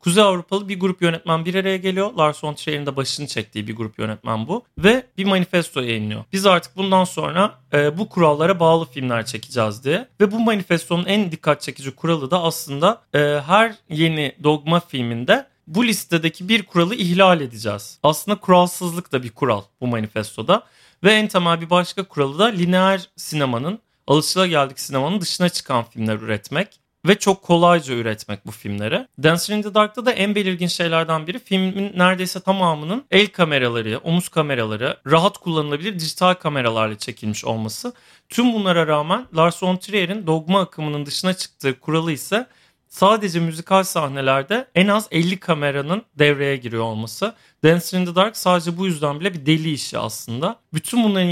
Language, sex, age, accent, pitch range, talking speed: Turkish, male, 40-59, native, 140-190 Hz, 165 wpm